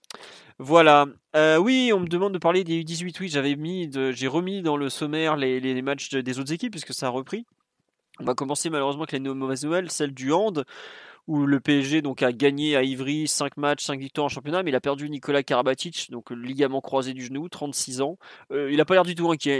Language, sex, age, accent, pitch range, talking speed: French, male, 20-39, French, 130-160 Hz, 225 wpm